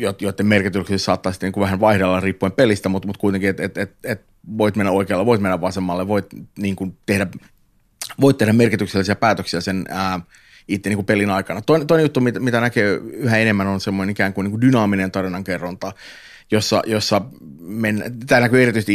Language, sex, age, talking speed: Finnish, male, 30-49, 140 wpm